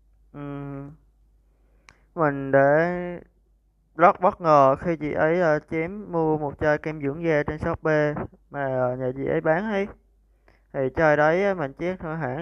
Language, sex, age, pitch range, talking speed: Vietnamese, male, 20-39, 135-165 Hz, 170 wpm